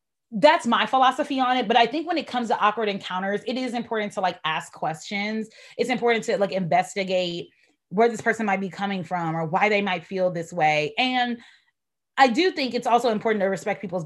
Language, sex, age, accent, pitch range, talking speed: English, female, 20-39, American, 180-230 Hz, 215 wpm